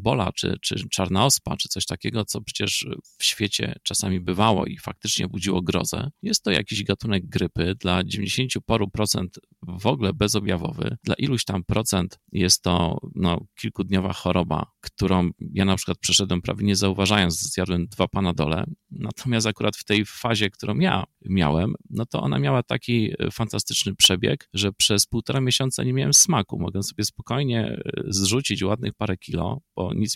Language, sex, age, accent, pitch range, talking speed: Polish, male, 30-49, native, 90-110 Hz, 165 wpm